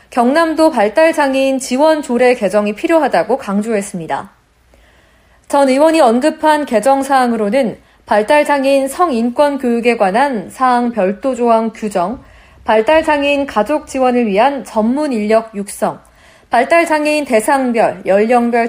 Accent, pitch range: native, 215-285 Hz